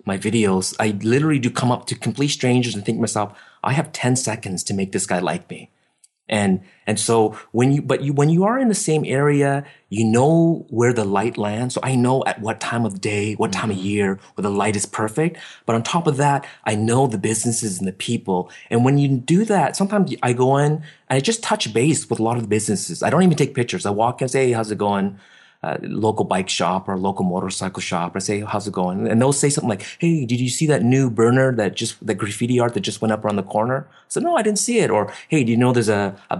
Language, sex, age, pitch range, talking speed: English, male, 30-49, 105-145 Hz, 260 wpm